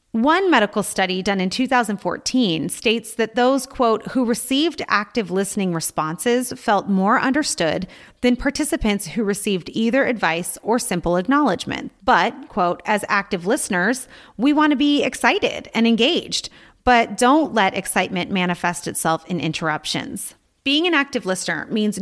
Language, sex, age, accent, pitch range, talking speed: English, female, 30-49, American, 180-250 Hz, 140 wpm